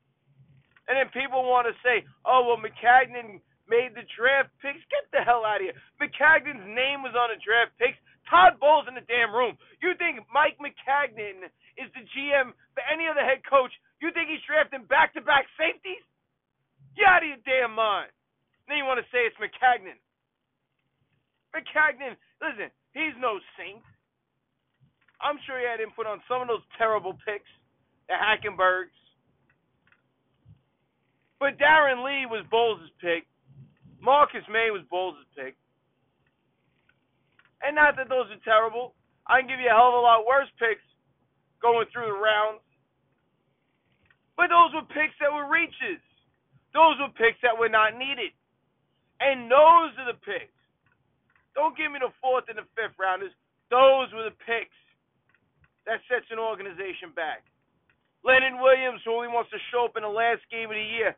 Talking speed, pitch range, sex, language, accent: 160 wpm, 215-285 Hz, male, English, American